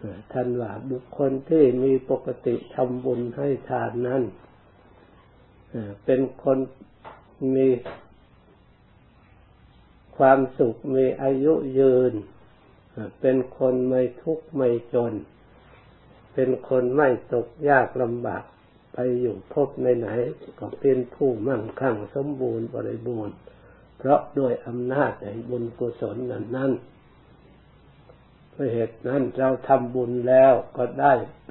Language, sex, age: Thai, male, 60-79